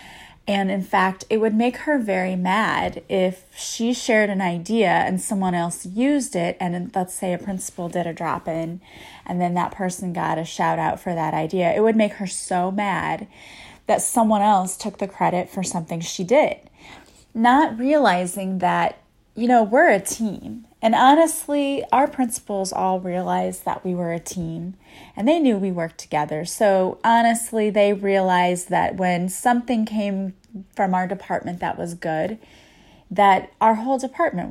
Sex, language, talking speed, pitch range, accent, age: female, English, 170 wpm, 180-230 Hz, American, 30-49